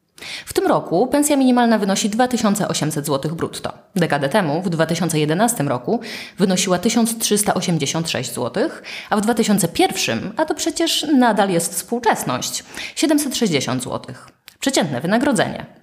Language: Polish